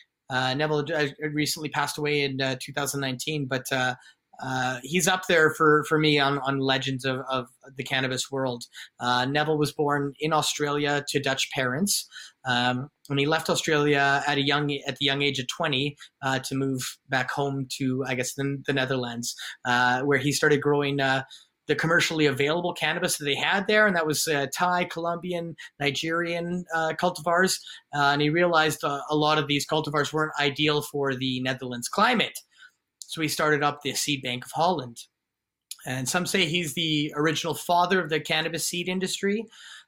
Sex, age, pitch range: male, 30-49, 135-160 Hz